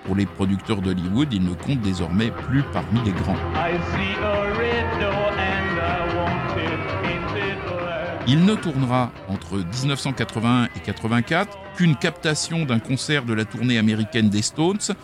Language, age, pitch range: French, 50-69, 110-145 Hz